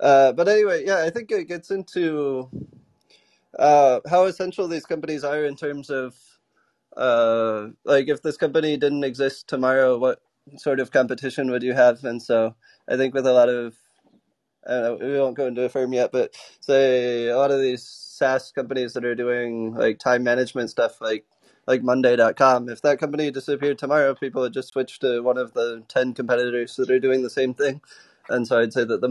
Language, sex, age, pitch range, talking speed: English, male, 20-39, 125-140 Hz, 190 wpm